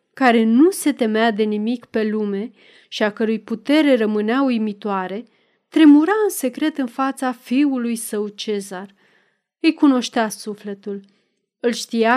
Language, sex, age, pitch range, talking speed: Romanian, female, 30-49, 215-280 Hz, 135 wpm